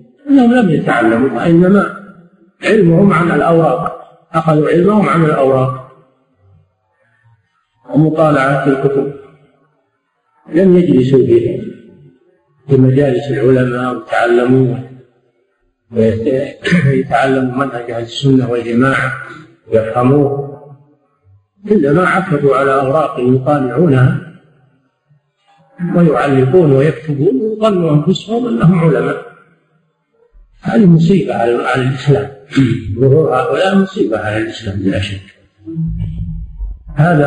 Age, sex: 50-69, male